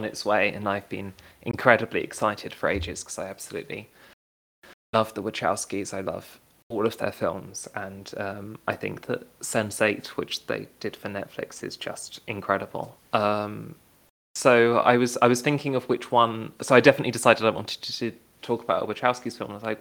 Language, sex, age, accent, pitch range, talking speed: English, male, 20-39, British, 100-120 Hz, 185 wpm